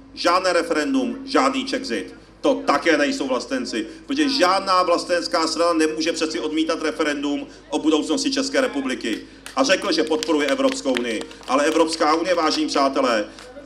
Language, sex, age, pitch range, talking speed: Czech, male, 40-59, 165-270 Hz, 135 wpm